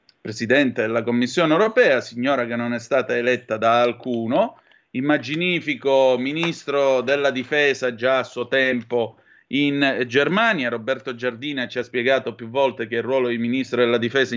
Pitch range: 120-160 Hz